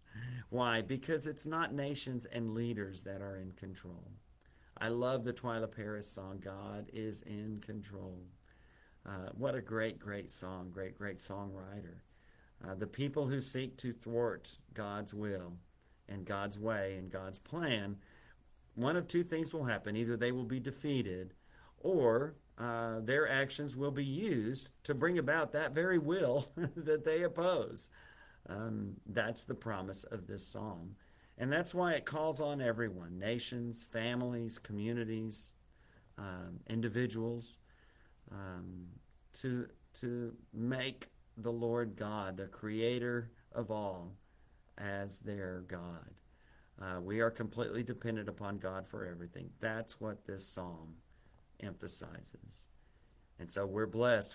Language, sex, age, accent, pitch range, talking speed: English, male, 50-69, American, 95-120 Hz, 135 wpm